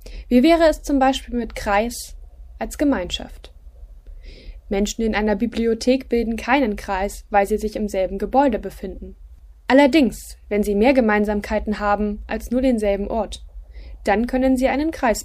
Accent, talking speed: German, 150 wpm